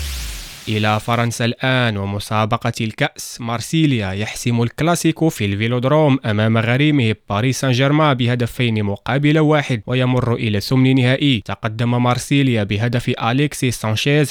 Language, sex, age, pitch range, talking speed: French, male, 20-39, 115-140 Hz, 110 wpm